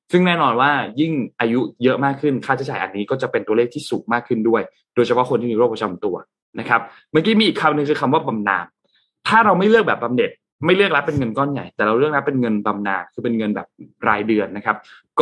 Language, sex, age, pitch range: Thai, male, 20-39, 115-155 Hz